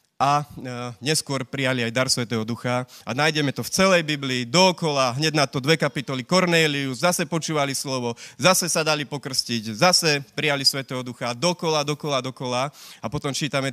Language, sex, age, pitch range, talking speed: Slovak, male, 30-49, 125-160 Hz, 160 wpm